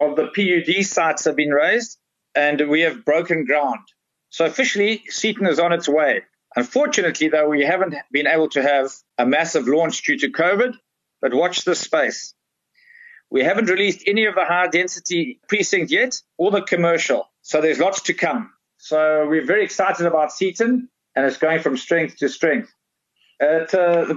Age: 50-69